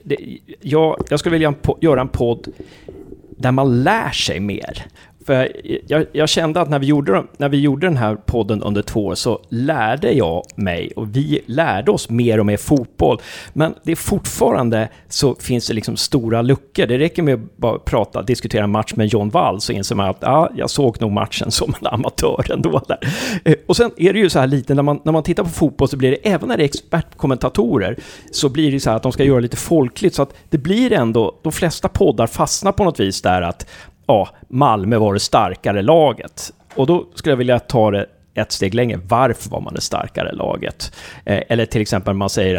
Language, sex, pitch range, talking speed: Swedish, male, 110-150 Hz, 215 wpm